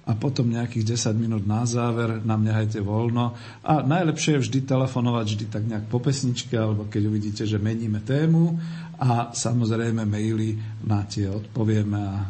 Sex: male